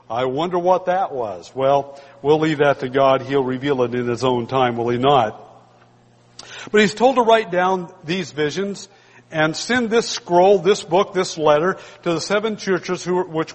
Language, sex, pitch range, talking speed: English, male, 150-200 Hz, 185 wpm